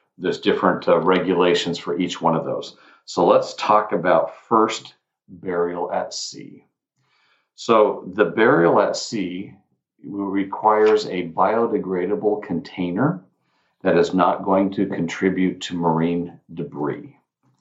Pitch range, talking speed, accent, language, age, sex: 85-100 Hz, 120 wpm, American, English, 50-69, male